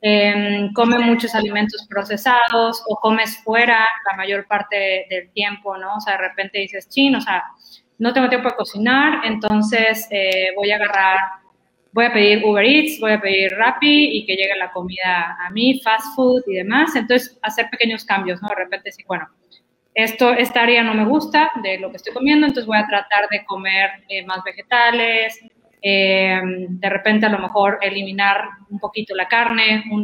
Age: 20-39